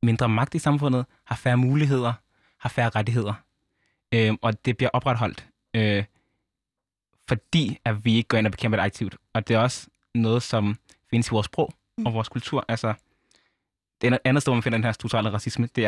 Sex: male